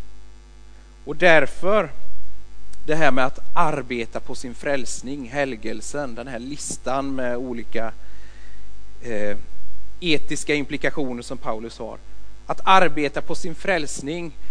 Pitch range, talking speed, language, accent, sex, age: 120-150 Hz, 110 wpm, Swedish, native, male, 30-49